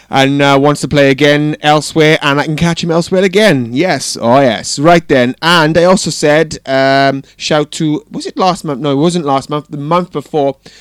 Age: 20-39